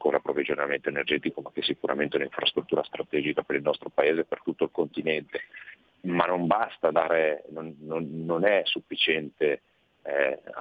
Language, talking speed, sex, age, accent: Italian, 160 wpm, male, 40-59, native